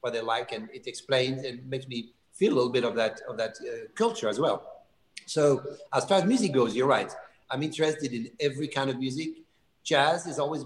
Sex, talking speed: male, 220 wpm